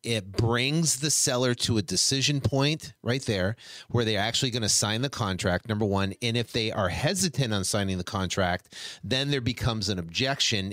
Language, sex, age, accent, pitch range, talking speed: English, male, 30-49, American, 100-130 Hz, 190 wpm